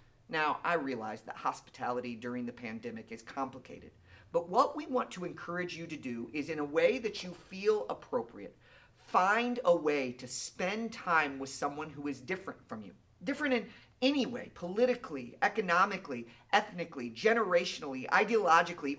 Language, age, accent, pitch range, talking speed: English, 40-59, American, 150-220 Hz, 155 wpm